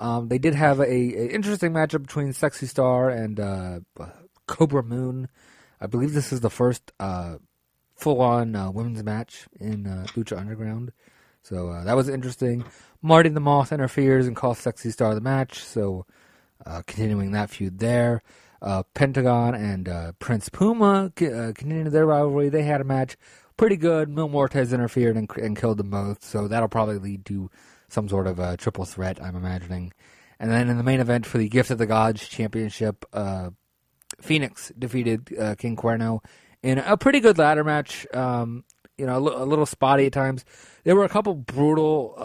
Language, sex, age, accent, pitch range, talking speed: English, male, 30-49, American, 105-135 Hz, 185 wpm